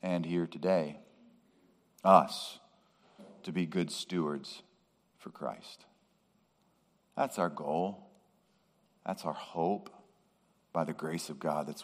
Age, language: 40-59, English